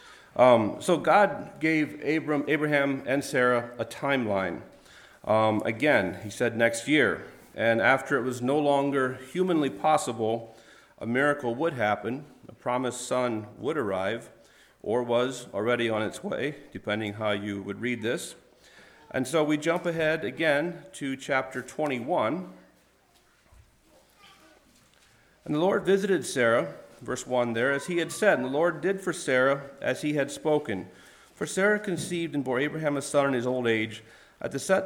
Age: 40-59